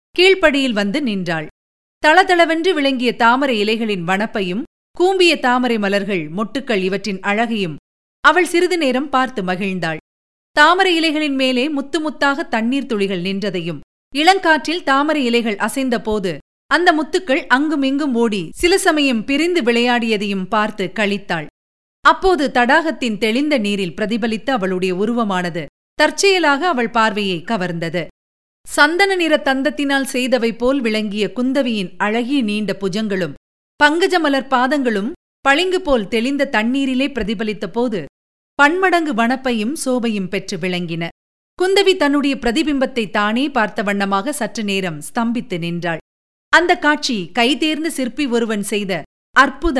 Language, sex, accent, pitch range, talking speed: Tamil, female, native, 205-290 Hz, 105 wpm